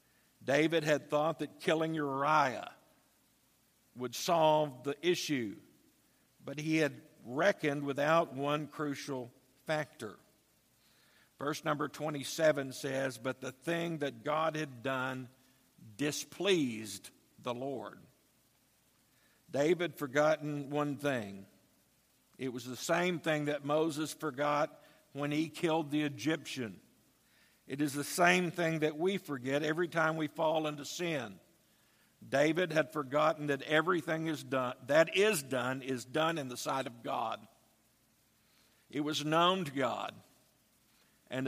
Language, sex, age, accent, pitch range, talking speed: English, male, 50-69, American, 130-155 Hz, 125 wpm